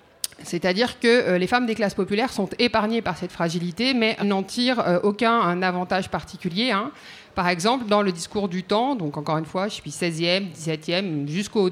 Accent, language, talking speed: French, French, 185 wpm